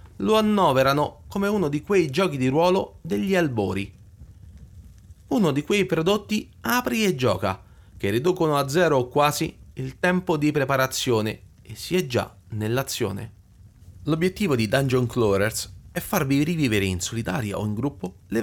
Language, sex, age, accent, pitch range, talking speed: Italian, male, 30-49, native, 100-165 Hz, 150 wpm